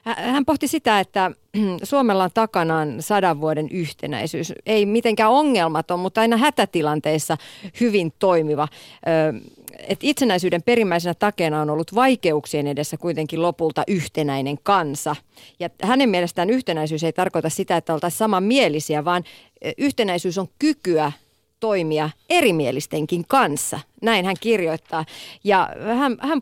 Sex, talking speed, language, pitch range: female, 115 wpm, Finnish, 160-220 Hz